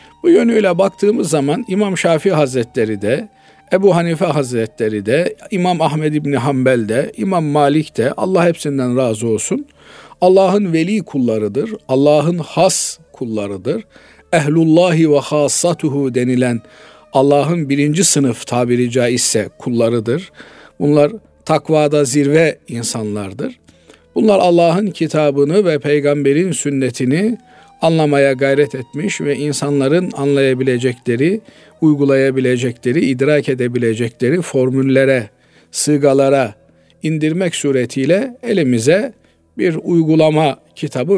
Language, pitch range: Turkish, 130-165 Hz